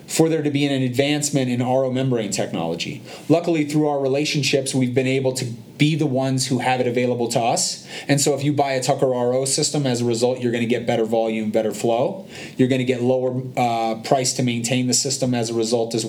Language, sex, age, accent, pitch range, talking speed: English, male, 30-49, American, 125-145 Hz, 225 wpm